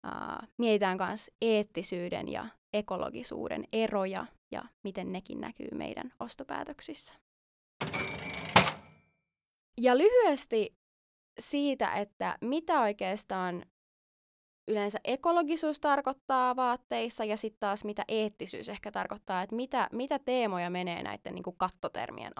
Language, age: Finnish, 20-39